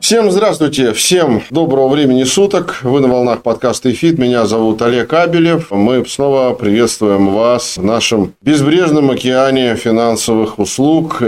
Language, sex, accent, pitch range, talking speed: Russian, male, native, 100-125 Hz, 135 wpm